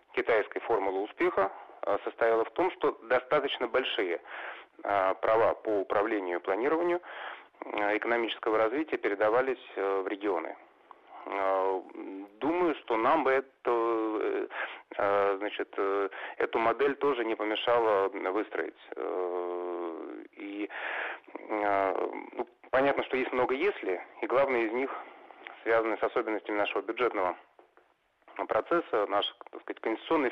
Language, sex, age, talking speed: Russian, male, 30-49, 95 wpm